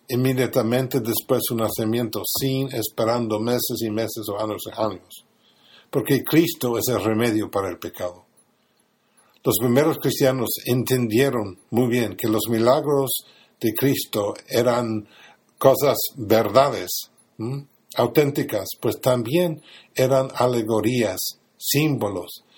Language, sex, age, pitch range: Spanish, male, 50-69, 110-135 Hz